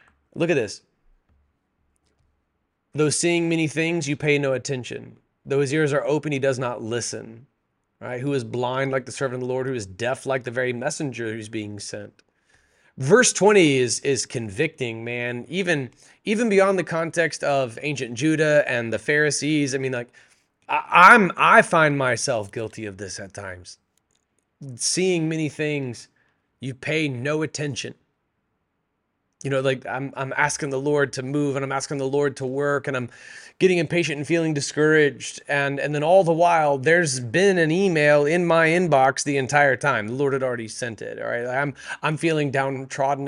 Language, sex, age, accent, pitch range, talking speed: English, male, 30-49, American, 125-160 Hz, 180 wpm